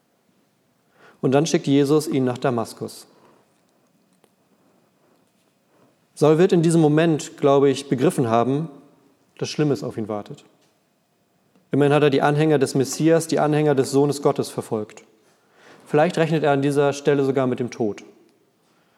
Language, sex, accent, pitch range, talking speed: German, male, German, 130-150 Hz, 140 wpm